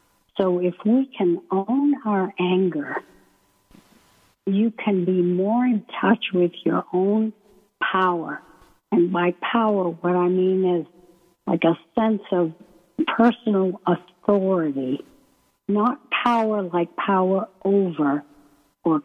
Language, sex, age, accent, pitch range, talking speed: English, female, 60-79, American, 175-225 Hz, 115 wpm